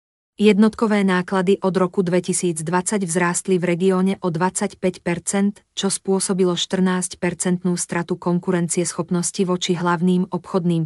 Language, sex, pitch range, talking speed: Slovak, female, 175-190 Hz, 100 wpm